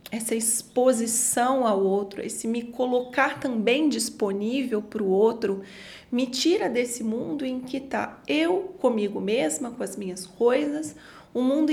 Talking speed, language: 150 wpm, Portuguese